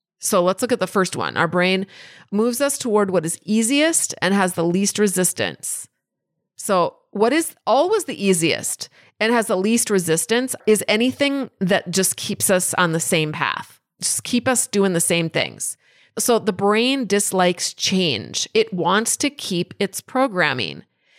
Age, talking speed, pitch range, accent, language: 30-49, 165 wpm, 180-240 Hz, American, English